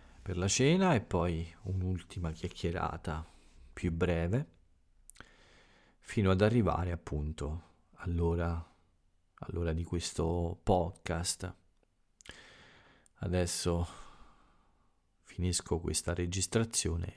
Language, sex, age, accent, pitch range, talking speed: Italian, male, 40-59, native, 85-100 Hz, 75 wpm